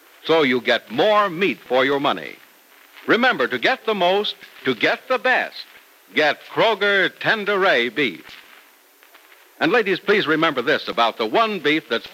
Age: 60-79